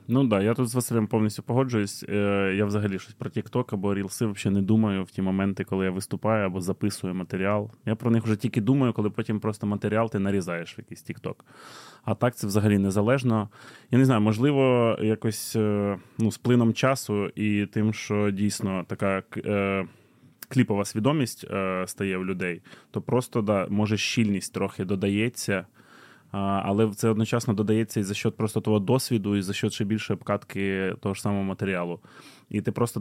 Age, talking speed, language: 20-39, 175 wpm, Ukrainian